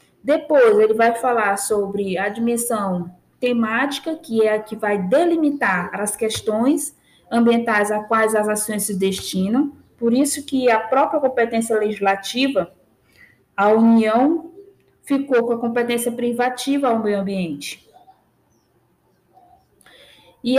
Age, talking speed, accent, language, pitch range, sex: 20-39, 120 wpm, Brazilian, Portuguese, 200-270 Hz, female